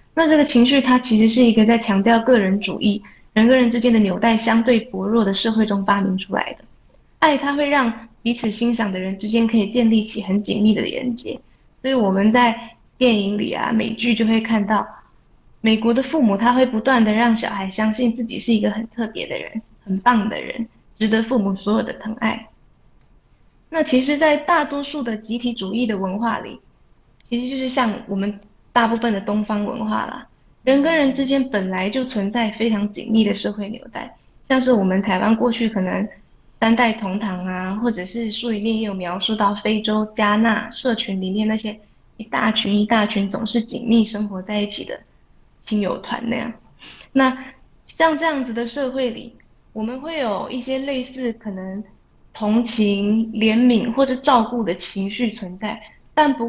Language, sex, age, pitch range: Chinese, female, 20-39, 210-245 Hz